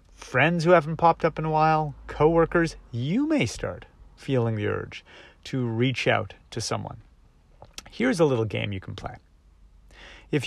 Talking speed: 160 wpm